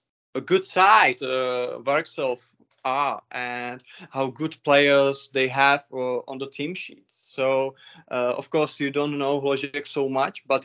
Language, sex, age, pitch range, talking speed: Czech, male, 20-39, 135-155 Hz, 165 wpm